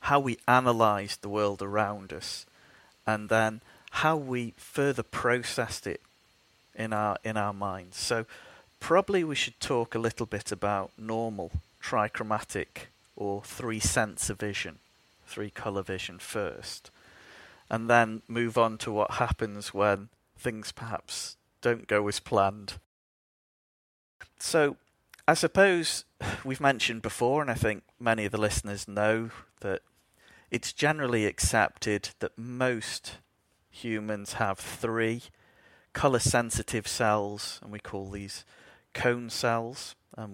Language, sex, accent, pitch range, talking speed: English, male, British, 100-120 Hz, 120 wpm